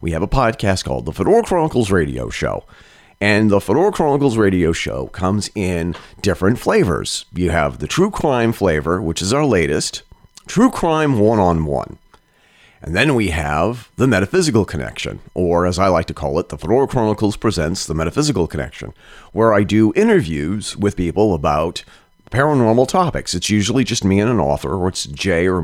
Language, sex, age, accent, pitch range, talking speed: English, male, 40-59, American, 90-130 Hz, 175 wpm